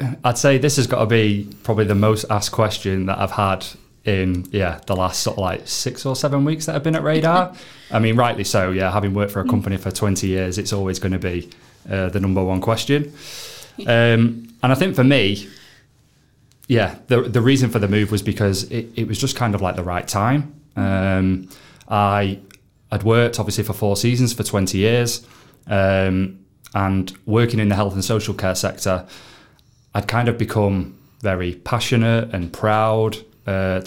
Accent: British